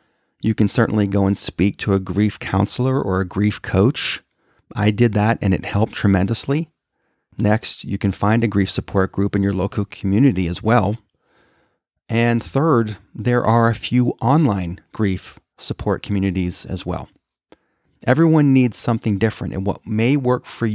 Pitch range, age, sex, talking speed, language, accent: 95-125 Hz, 40-59, male, 160 wpm, English, American